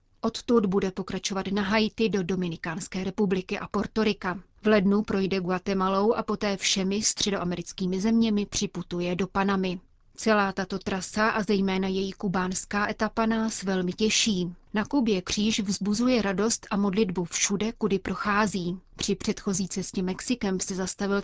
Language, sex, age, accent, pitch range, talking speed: Czech, female, 30-49, native, 185-215 Hz, 140 wpm